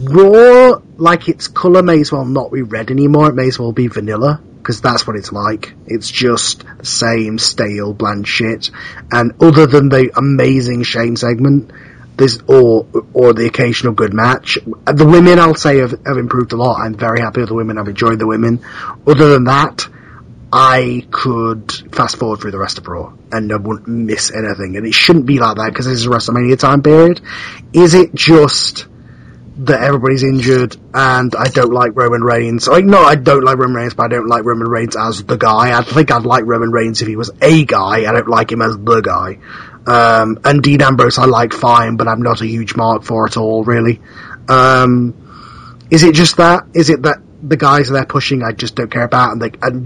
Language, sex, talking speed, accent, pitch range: English, male, 210 wpm, British, 115-140 Hz